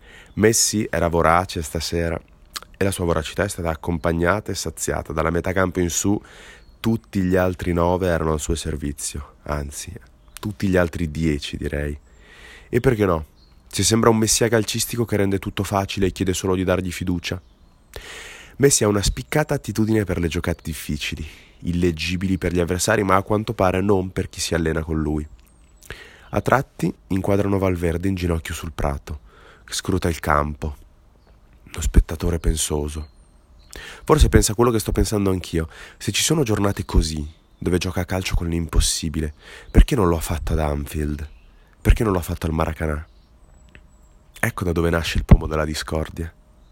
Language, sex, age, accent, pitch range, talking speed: Italian, male, 30-49, native, 80-95 Hz, 165 wpm